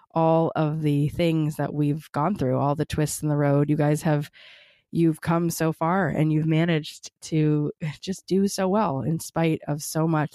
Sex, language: female, English